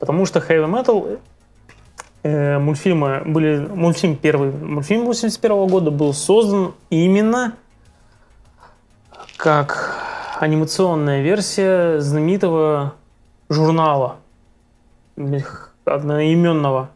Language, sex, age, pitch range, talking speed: Russian, male, 20-39, 145-175 Hz, 70 wpm